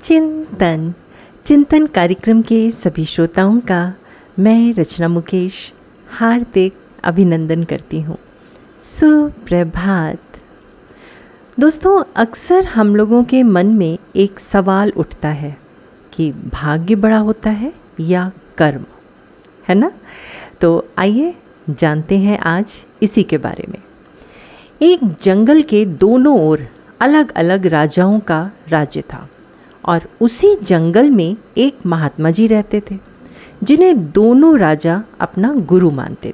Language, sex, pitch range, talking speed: Hindi, female, 170-245 Hz, 115 wpm